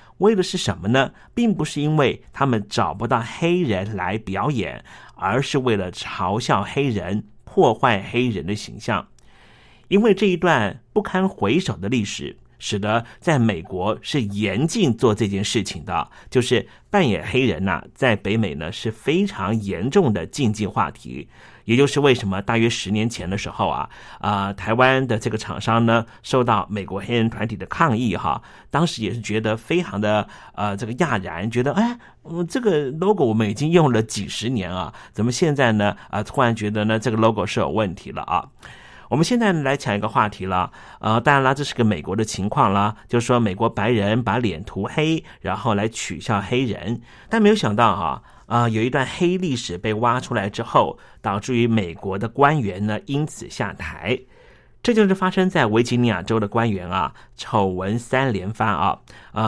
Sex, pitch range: male, 105-135 Hz